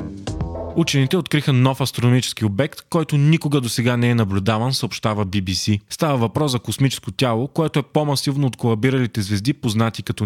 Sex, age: male, 30-49